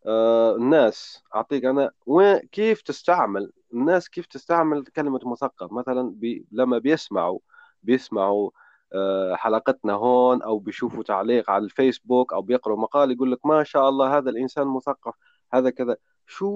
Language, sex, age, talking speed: Arabic, male, 30-49, 140 wpm